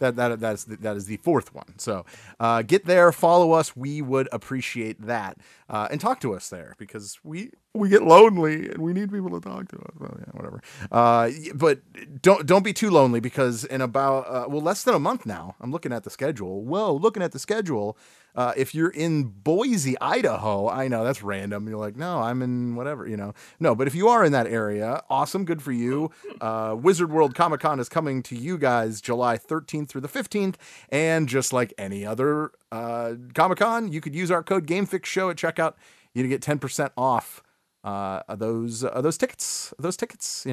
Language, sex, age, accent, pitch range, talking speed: English, male, 30-49, American, 115-165 Hz, 215 wpm